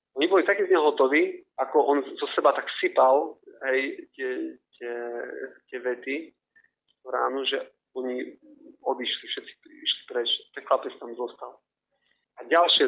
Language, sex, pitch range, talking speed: Slovak, male, 125-145 Hz, 140 wpm